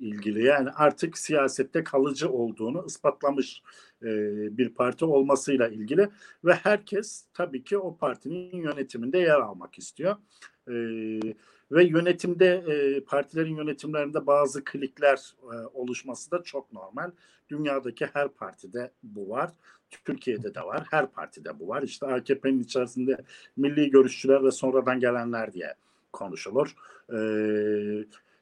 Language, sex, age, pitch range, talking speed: German, male, 50-69, 125-175 Hz, 120 wpm